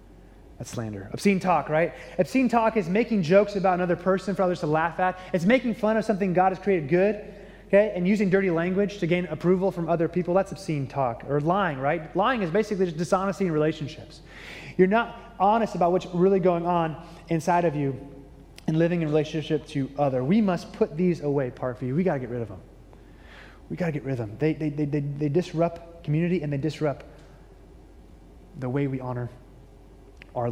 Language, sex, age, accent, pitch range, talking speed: English, male, 20-39, American, 145-200 Hz, 205 wpm